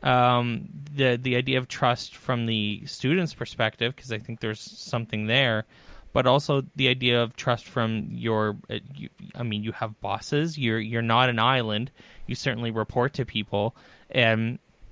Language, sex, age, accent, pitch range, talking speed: English, male, 20-39, American, 115-135 Hz, 170 wpm